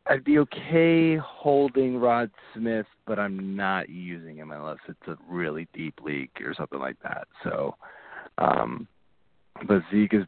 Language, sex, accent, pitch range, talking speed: English, male, American, 90-115 Hz, 150 wpm